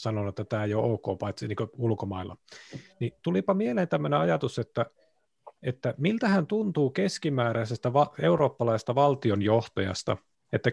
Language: Finnish